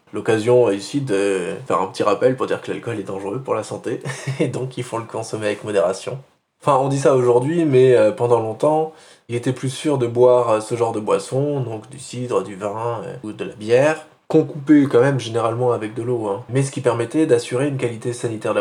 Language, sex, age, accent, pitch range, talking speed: French, male, 20-39, French, 110-145 Hz, 225 wpm